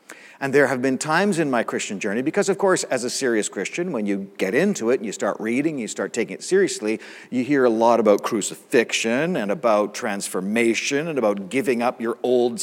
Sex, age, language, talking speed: male, 50-69, English, 220 wpm